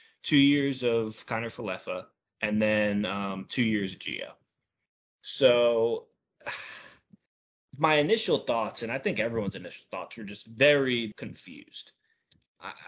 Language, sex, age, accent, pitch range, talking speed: English, male, 20-39, American, 105-135 Hz, 125 wpm